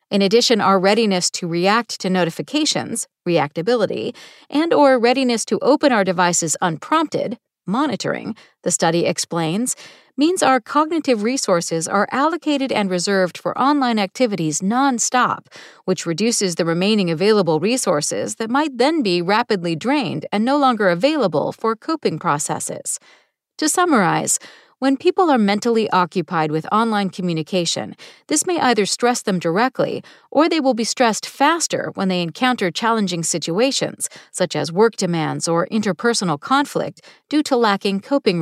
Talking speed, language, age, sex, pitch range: 140 wpm, English, 40-59, female, 180-265 Hz